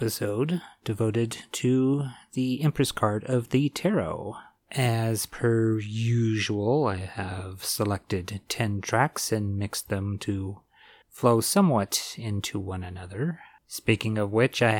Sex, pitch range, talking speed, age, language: male, 105-135 Hz, 120 wpm, 30-49, English